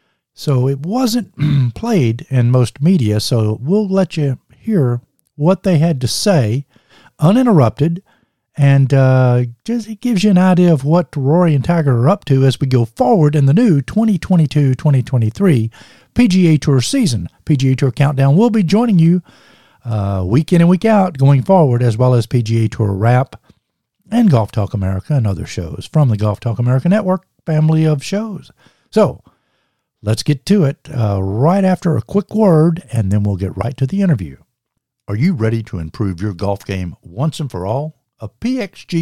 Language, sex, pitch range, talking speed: English, male, 120-175 Hz, 180 wpm